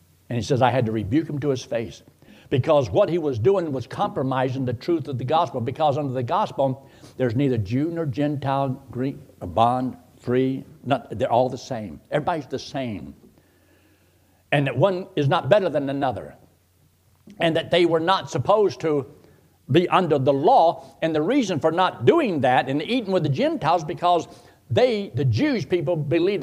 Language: English